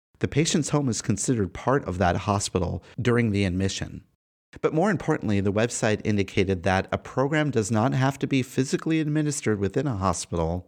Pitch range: 95-130 Hz